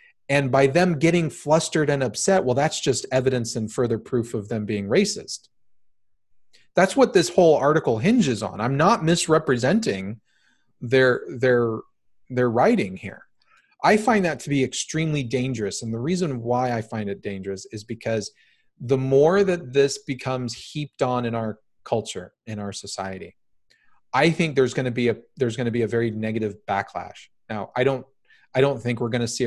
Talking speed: 175 wpm